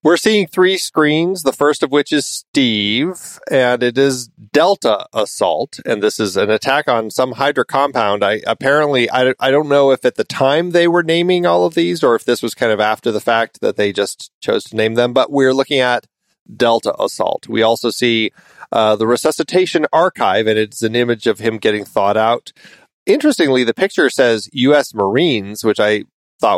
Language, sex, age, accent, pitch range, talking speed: English, male, 30-49, American, 110-140 Hz, 195 wpm